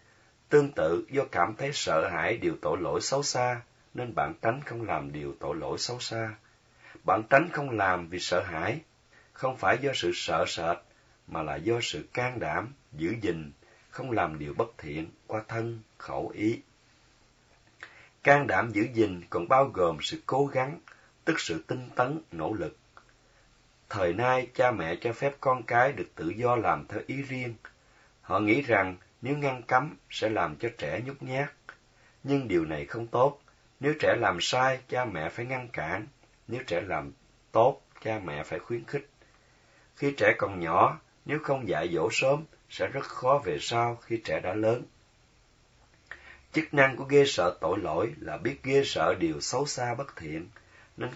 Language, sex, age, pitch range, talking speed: Vietnamese, male, 30-49, 110-135 Hz, 180 wpm